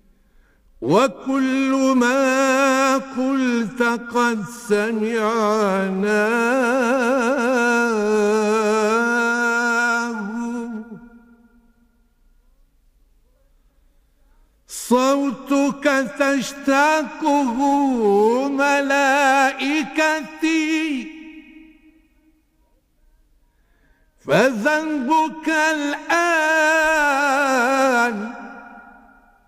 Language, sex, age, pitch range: Arabic, male, 50-69, 235-290 Hz